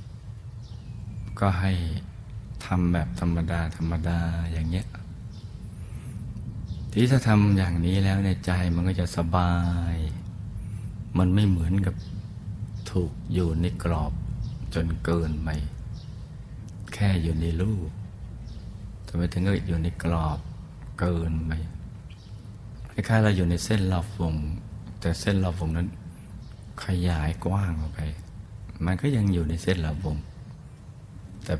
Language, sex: Thai, male